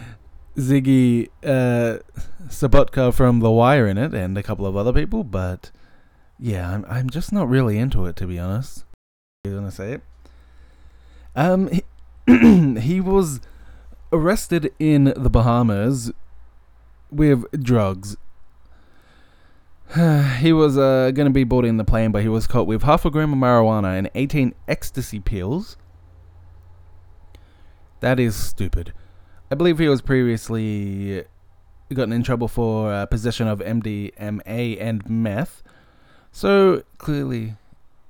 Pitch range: 90-130 Hz